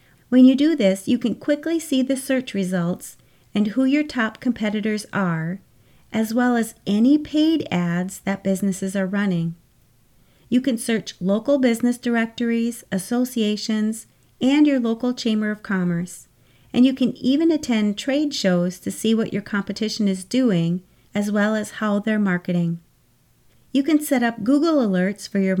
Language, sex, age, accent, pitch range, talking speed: English, female, 40-59, American, 195-255 Hz, 160 wpm